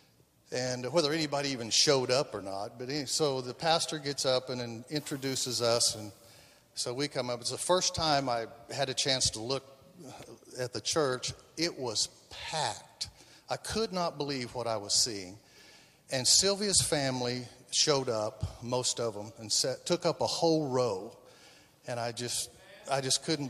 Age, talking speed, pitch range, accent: 50-69, 175 wpm, 115-145 Hz, American